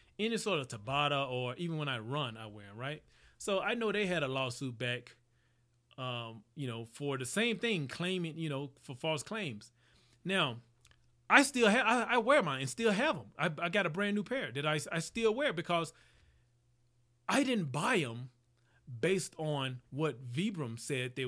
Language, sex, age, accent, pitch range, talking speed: English, male, 30-49, American, 125-185 Hz, 195 wpm